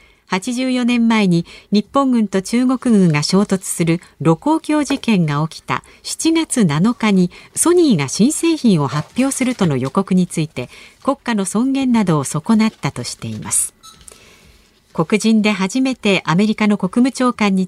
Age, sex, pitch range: 50-69, female, 165-255 Hz